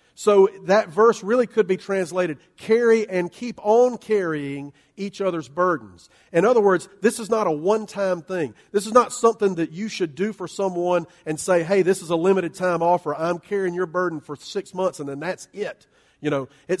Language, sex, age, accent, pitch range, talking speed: English, male, 40-59, American, 155-195 Hz, 205 wpm